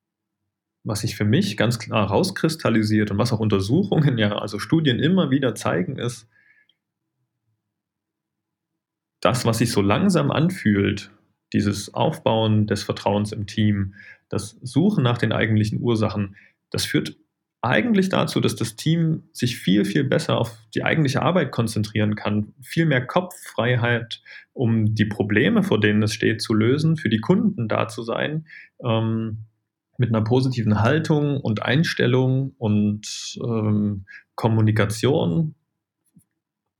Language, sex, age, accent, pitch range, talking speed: German, male, 30-49, German, 105-135 Hz, 135 wpm